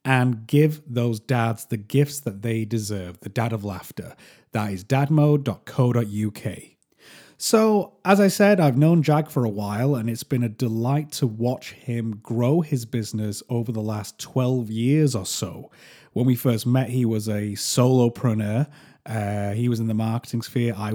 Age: 30-49